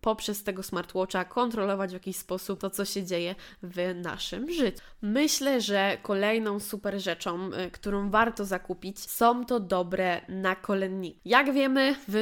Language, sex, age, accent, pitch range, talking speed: Polish, female, 20-39, native, 190-220 Hz, 145 wpm